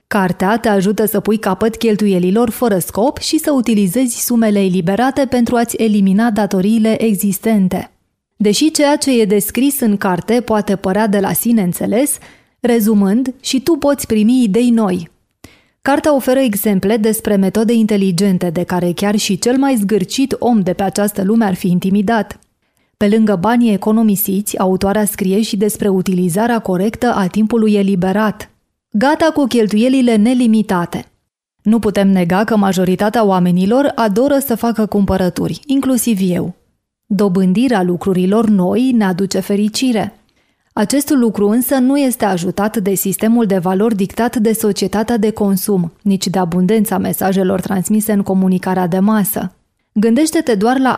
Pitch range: 195-235 Hz